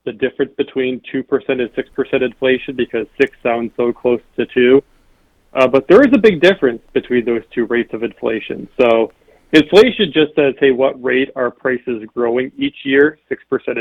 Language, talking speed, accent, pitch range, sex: English, 175 wpm, American, 120-145 Hz, male